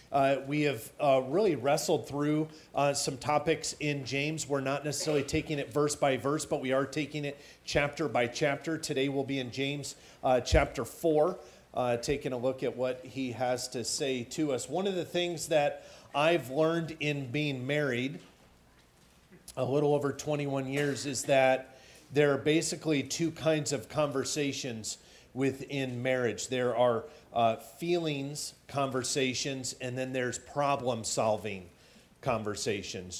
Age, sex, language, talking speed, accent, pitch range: 40-59, male, English, 150 wpm, American, 130-150 Hz